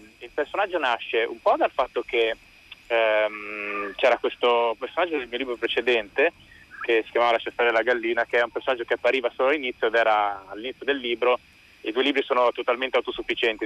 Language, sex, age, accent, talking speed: Italian, male, 20-39, native, 185 wpm